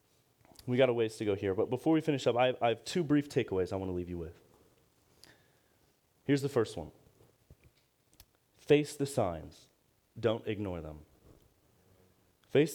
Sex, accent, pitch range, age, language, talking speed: male, American, 110-155 Hz, 30-49, English, 170 wpm